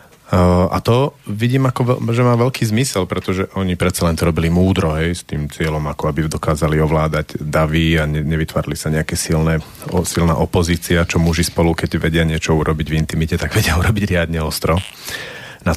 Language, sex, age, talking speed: Slovak, male, 30-49, 190 wpm